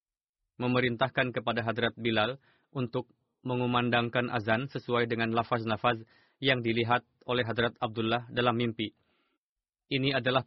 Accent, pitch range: native, 115-130 Hz